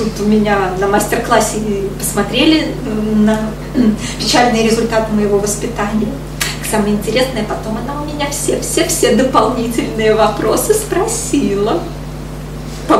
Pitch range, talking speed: 205-255 Hz, 100 wpm